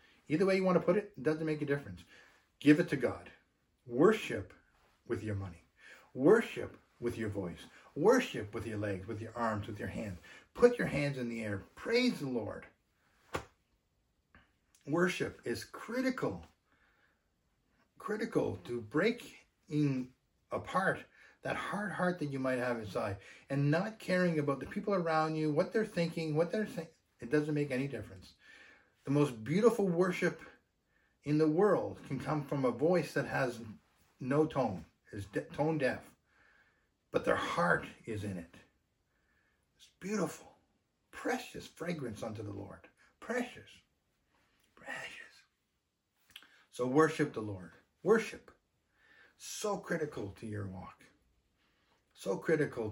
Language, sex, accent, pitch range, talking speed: English, male, American, 110-165 Hz, 140 wpm